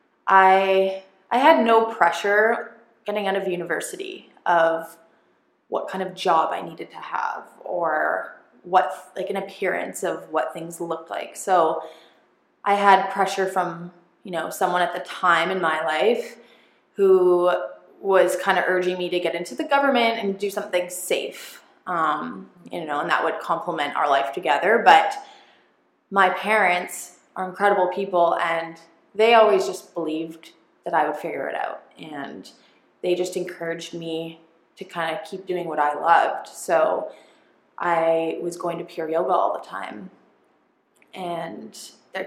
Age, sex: 20-39, female